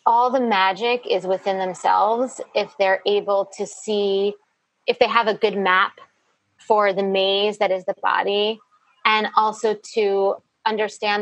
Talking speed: 150 wpm